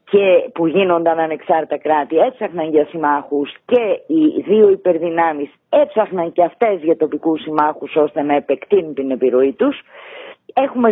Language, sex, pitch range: Greek, female, 155-235 Hz